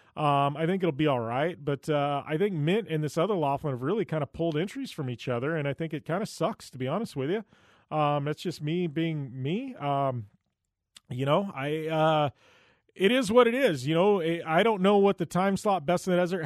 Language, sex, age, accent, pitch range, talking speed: English, male, 30-49, American, 140-175 Hz, 240 wpm